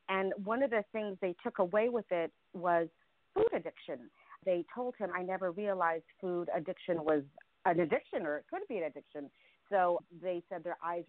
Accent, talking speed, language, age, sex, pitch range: American, 190 wpm, English, 40-59, female, 155-185 Hz